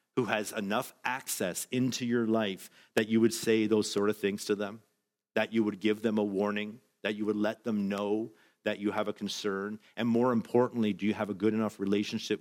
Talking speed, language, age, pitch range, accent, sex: 220 wpm, English, 50-69, 105-130 Hz, American, male